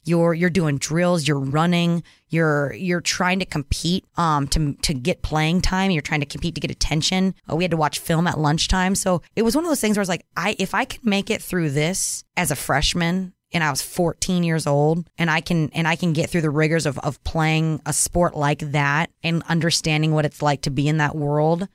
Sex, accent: female, American